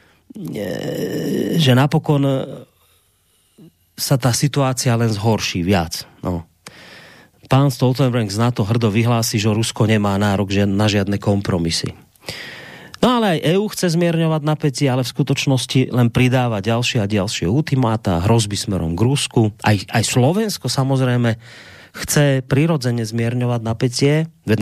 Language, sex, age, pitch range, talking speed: Slovak, male, 30-49, 105-140 Hz, 130 wpm